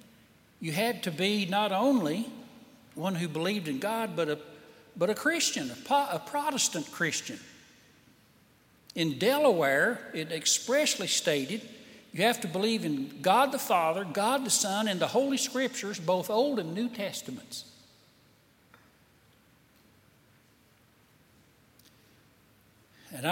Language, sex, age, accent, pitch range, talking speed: English, male, 60-79, American, 160-250 Hz, 120 wpm